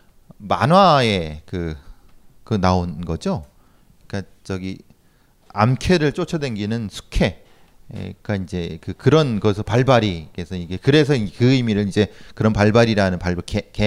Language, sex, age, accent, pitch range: Korean, male, 40-59, native, 95-125 Hz